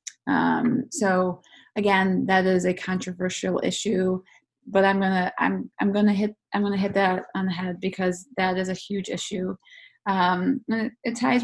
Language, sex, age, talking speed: English, female, 20-39, 175 wpm